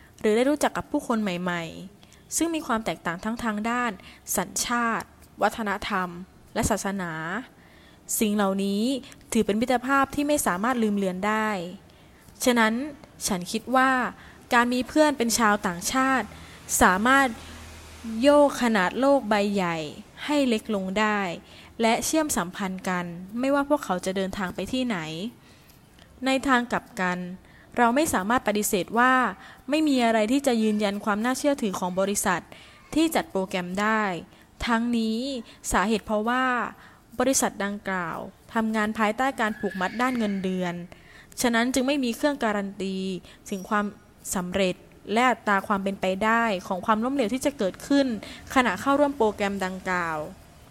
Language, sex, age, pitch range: English, female, 20-39, 195-250 Hz